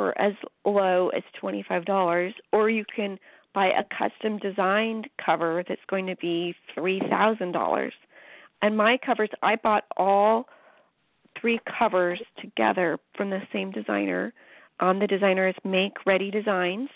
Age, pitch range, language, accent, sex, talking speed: 40-59, 190-230 Hz, English, American, female, 150 wpm